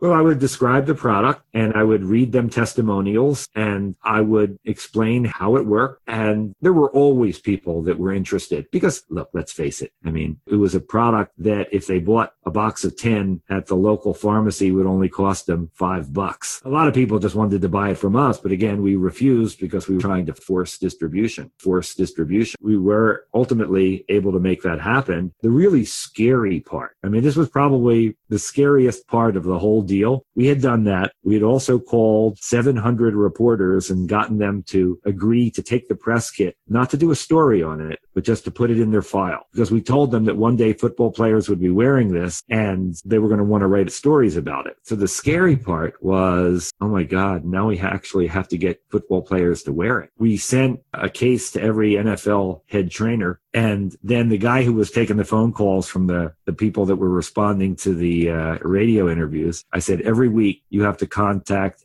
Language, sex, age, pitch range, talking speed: English, male, 40-59, 95-115 Hz, 215 wpm